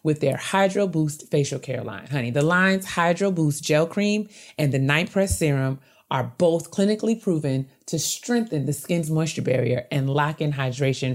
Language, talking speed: English, 180 wpm